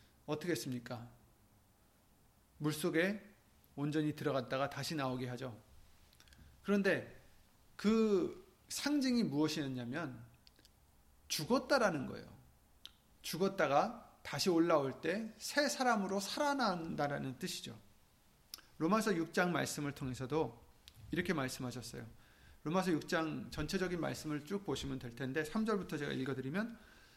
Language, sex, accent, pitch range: Korean, male, native, 125-205 Hz